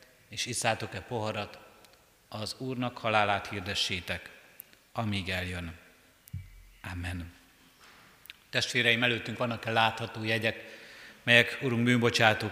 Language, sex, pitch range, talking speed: Hungarian, male, 105-115 Hz, 85 wpm